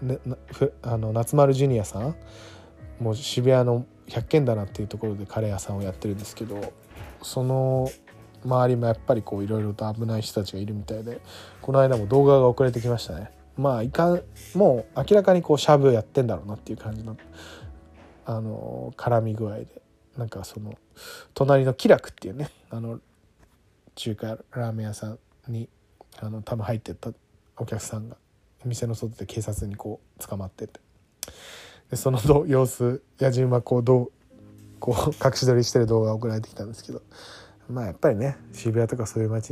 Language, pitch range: Japanese, 105-125 Hz